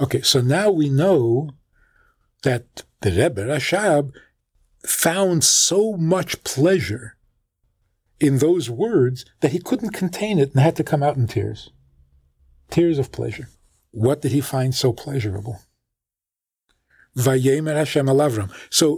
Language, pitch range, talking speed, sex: English, 115-165 Hz, 130 wpm, male